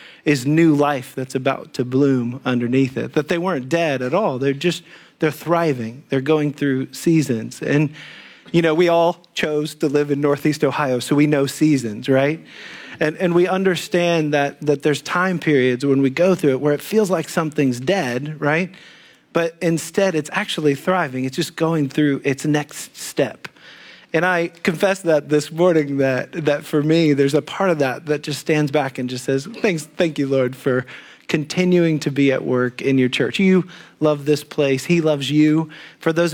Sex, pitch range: male, 135-165 Hz